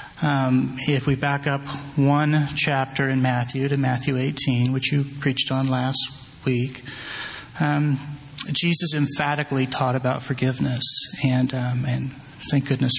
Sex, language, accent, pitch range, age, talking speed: male, English, American, 130-145 Hz, 30-49, 135 wpm